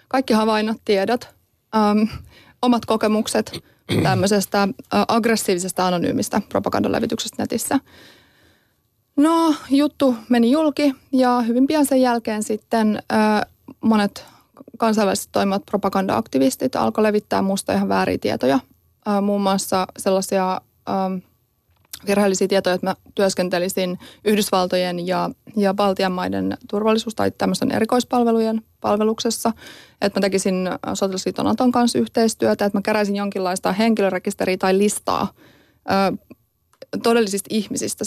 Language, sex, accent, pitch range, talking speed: Finnish, female, native, 195-235 Hz, 95 wpm